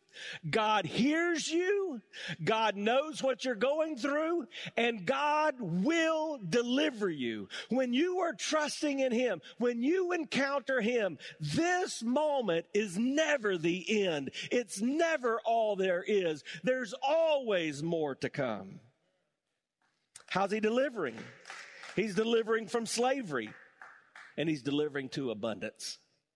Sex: male